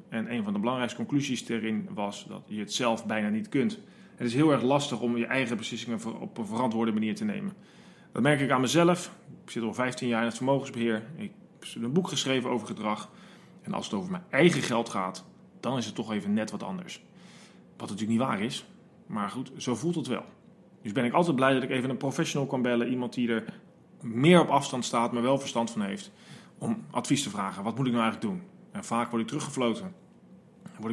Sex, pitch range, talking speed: male, 115-185 Hz, 225 wpm